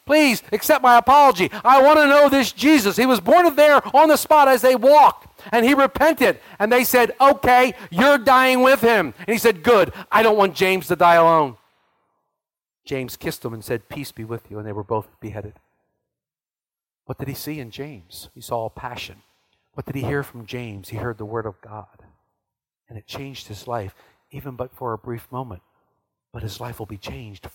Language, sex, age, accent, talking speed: English, male, 50-69, American, 205 wpm